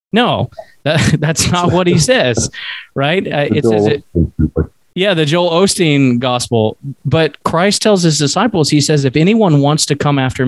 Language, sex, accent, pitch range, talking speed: English, male, American, 120-155 Hz, 170 wpm